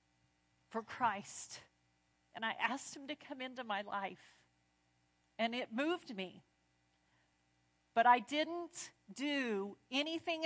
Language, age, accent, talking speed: English, 50-69, American, 115 wpm